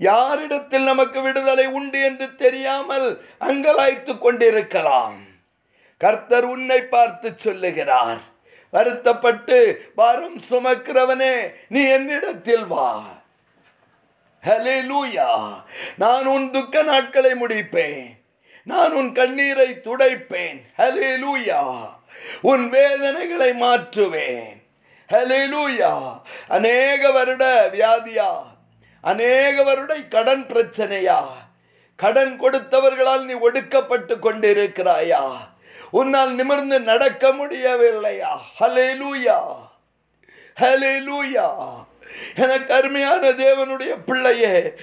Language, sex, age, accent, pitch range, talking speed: Tamil, male, 50-69, native, 255-280 Hz, 60 wpm